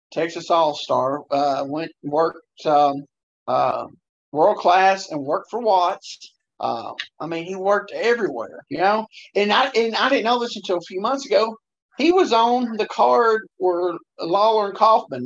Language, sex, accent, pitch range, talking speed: English, male, American, 160-220 Hz, 170 wpm